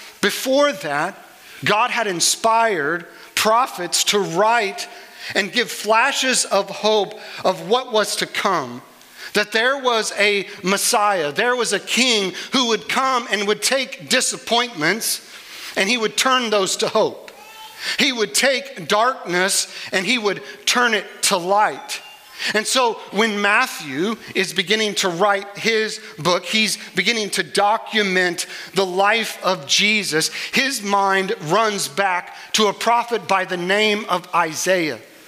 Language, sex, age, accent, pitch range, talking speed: English, male, 40-59, American, 185-225 Hz, 140 wpm